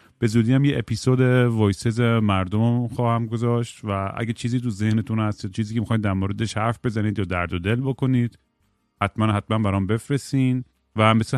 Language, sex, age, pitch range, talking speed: Persian, male, 30-49, 100-120 Hz, 175 wpm